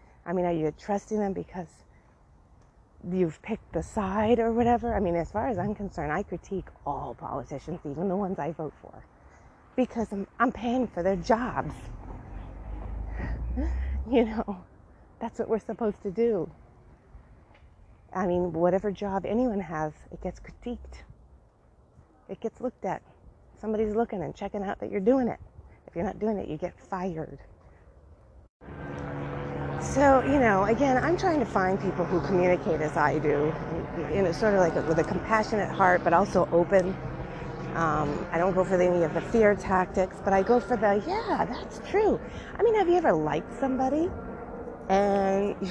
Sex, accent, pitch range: female, American, 155-225 Hz